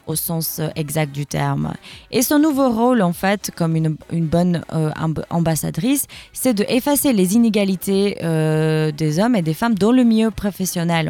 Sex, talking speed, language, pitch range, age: female, 170 wpm, French, 160-200 Hz, 20-39